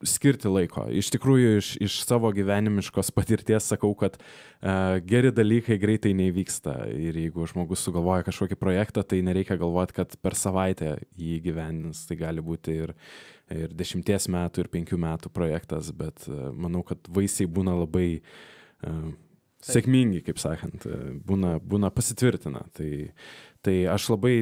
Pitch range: 85-100 Hz